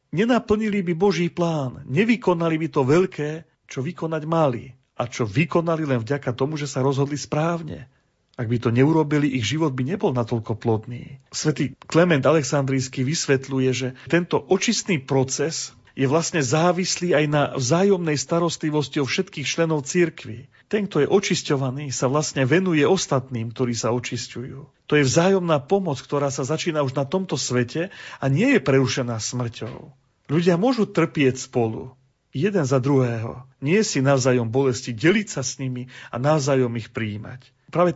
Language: Slovak